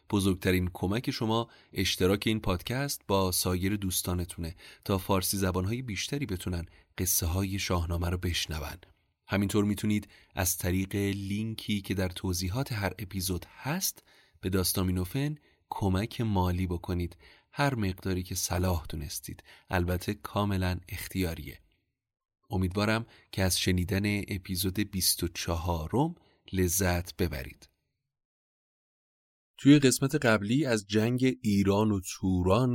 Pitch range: 90-105 Hz